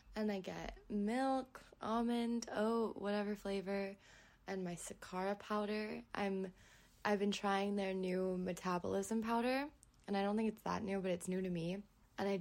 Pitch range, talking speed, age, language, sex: 185-215 Hz, 165 wpm, 20-39, English, female